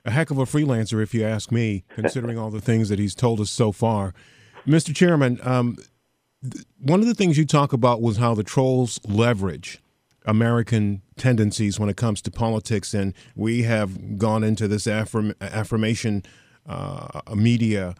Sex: male